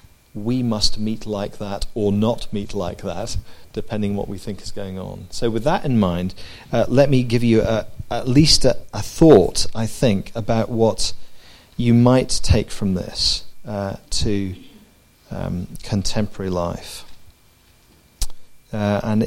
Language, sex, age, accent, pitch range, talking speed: English, male, 40-59, British, 100-120 Hz, 155 wpm